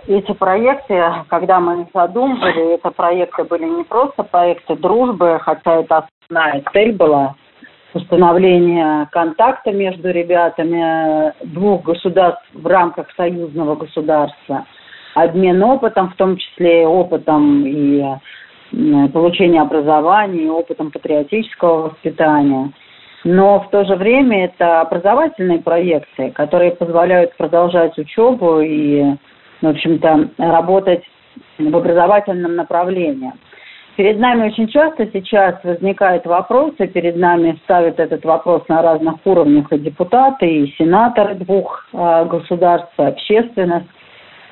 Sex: female